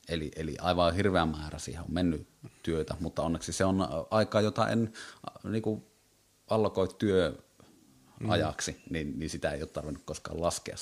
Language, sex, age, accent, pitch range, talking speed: Finnish, male, 30-49, native, 80-105 Hz, 150 wpm